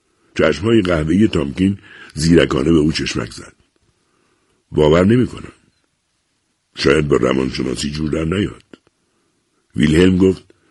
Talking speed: 110 wpm